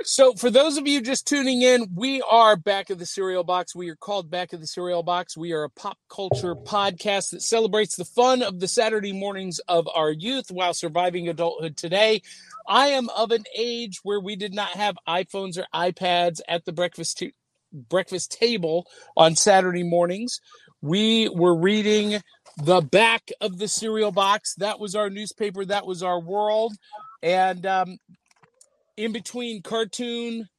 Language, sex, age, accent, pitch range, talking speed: English, male, 50-69, American, 175-225 Hz, 175 wpm